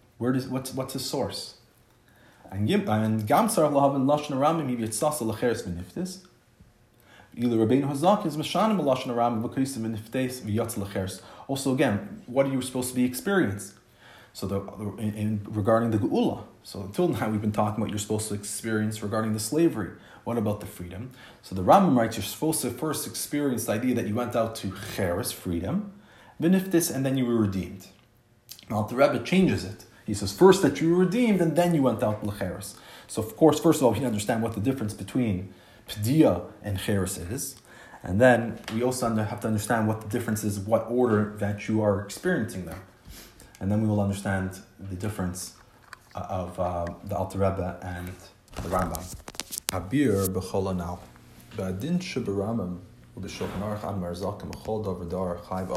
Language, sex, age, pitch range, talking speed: English, male, 30-49, 100-125 Hz, 145 wpm